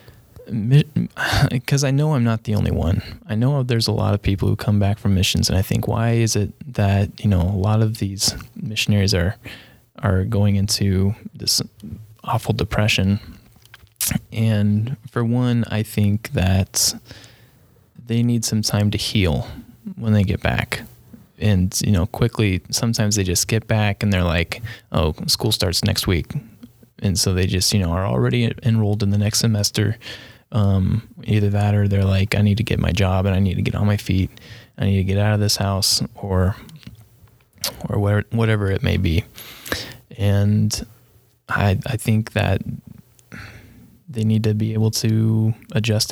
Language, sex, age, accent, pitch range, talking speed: English, male, 20-39, American, 100-115 Hz, 175 wpm